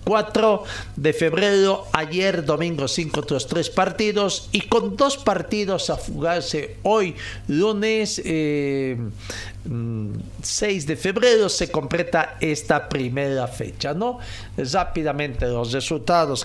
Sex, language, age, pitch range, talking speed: male, Spanish, 50-69, 135-190 Hz, 110 wpm